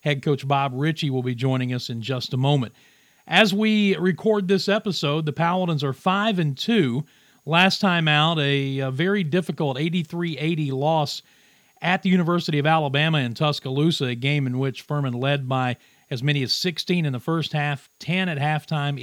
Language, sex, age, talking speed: English, male, 40-59, 175 wpm